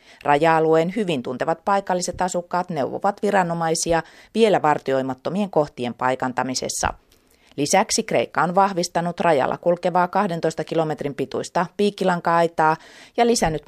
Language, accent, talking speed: Finnish, native, 100 wpm